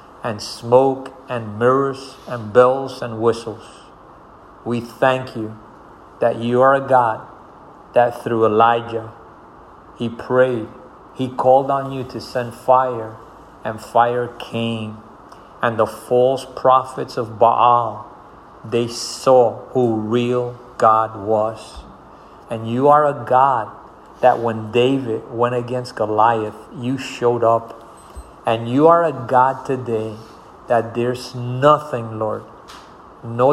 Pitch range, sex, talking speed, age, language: 115-130 Hz, male, 120 wpm, 50-69, English